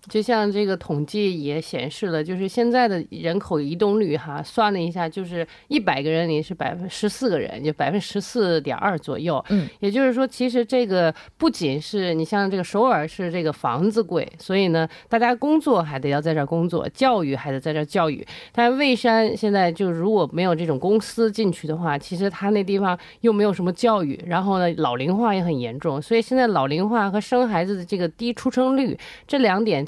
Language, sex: Korean, female